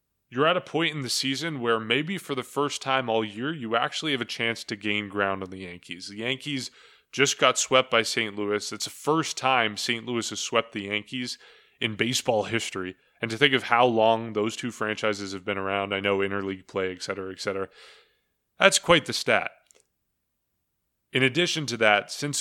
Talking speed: 205 wpm